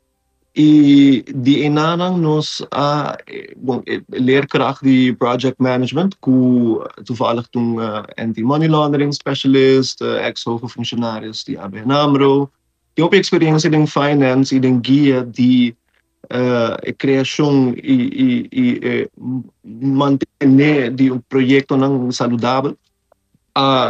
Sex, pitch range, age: male, 125-145 Hz, 20-39